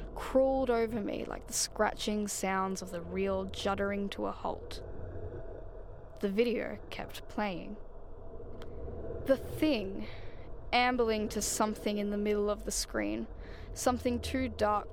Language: English